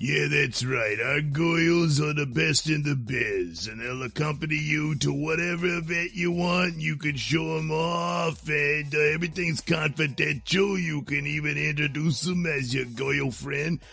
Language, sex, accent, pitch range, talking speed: English, male, American, 130-170 Hz, 165 wpm